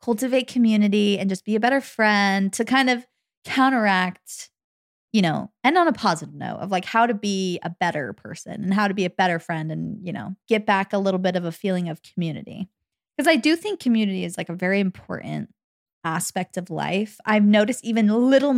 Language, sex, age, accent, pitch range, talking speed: English, female, 20-39, American, 190-230 Hz, 205 wpm